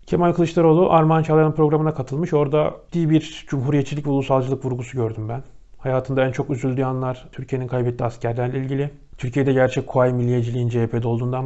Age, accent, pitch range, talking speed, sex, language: 40-59, native, 125-145 Hz, 145 wpm, male, Turkish